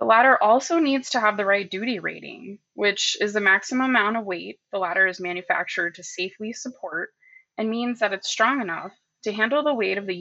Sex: female